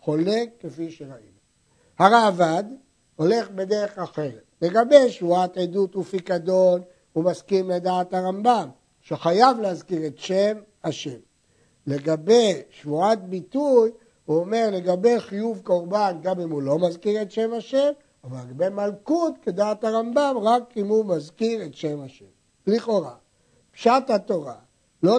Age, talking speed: 60-79, 120 wpm